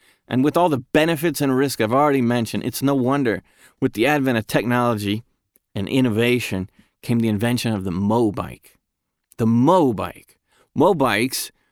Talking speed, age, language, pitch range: 150 wpm, 30-49, English, 105-130 Hz